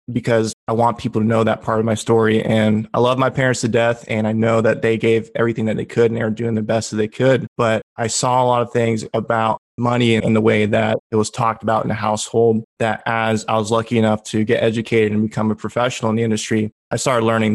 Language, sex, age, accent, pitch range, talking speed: English, male, 20-39, American, 110-115 Hz, 255 wpm